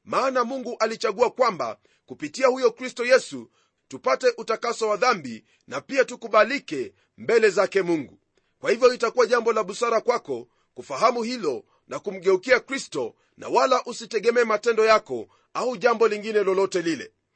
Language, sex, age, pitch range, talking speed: Swahili, male, 40-59, 220-270 Hz, 140 wpm